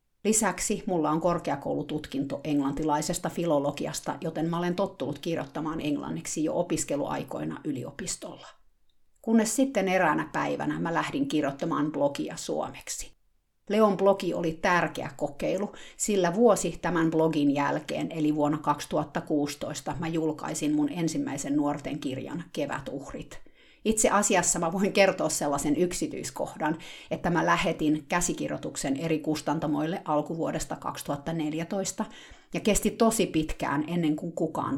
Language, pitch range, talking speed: Finnish, 150-190 Hz, 110 wpm